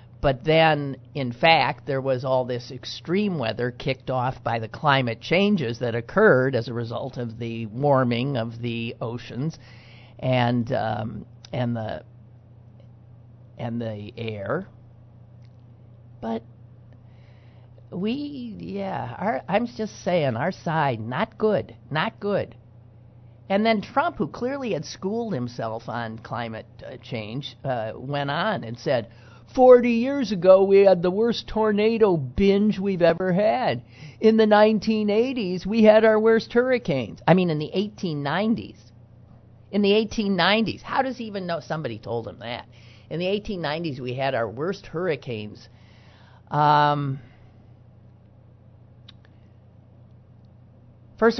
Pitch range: 115-180 Hz